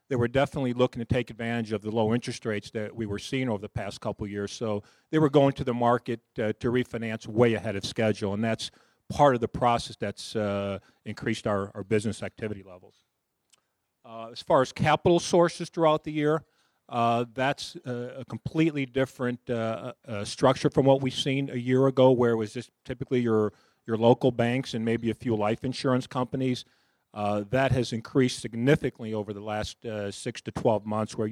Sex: male